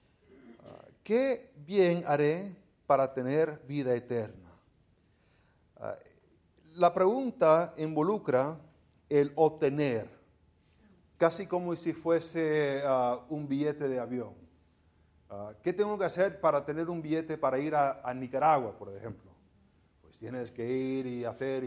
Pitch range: 105-175 Hz